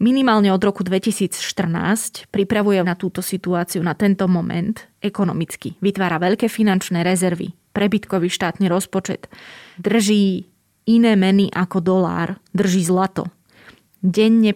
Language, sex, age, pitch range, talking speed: Slovak, female, 20-39, 175-205 Hz, 110 wpm